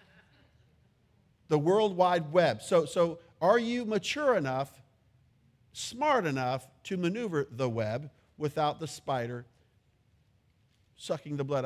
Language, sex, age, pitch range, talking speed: English, male, 50-69, 120-170 Hz, 115 wpm